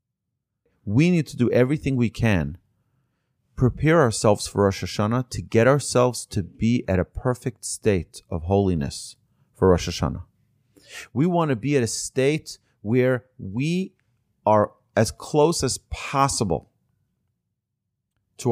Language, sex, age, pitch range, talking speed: English, male, 30-49, 105-135 Hz, 135 wpm